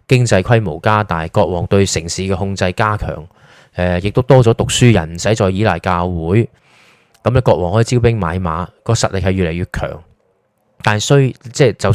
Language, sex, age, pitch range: Chinese, male, 20-39, 95-120 Hz